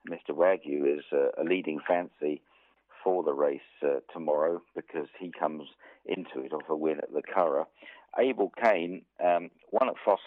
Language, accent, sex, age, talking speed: English, British, male, 50-69, 170 wpm